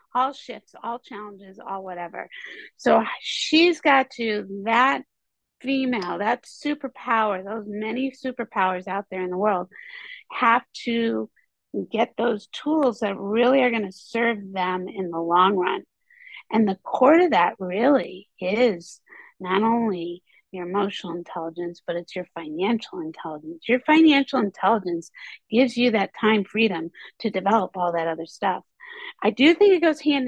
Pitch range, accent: 190-260 Hz, American